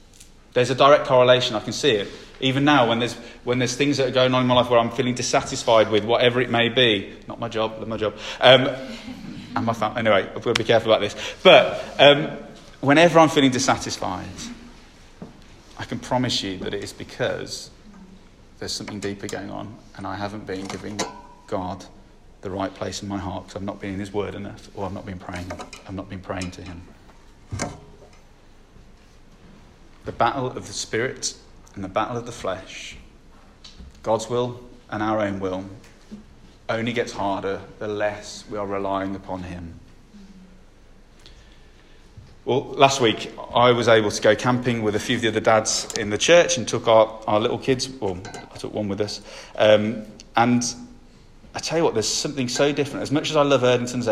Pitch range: 100-125 Hz